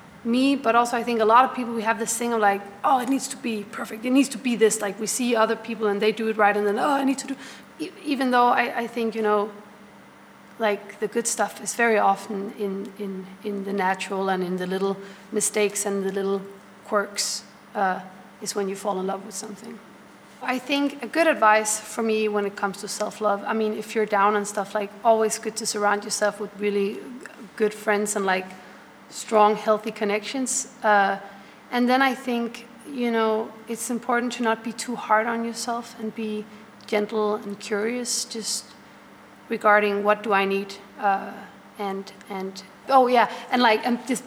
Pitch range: 205-235 Hz